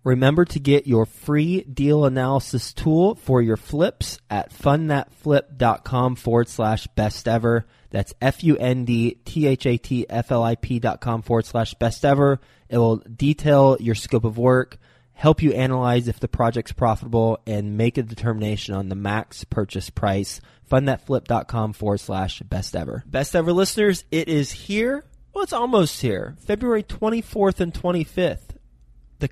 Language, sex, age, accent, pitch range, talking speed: English, male, 20-39, American, 115-145 Hz, 125 wpm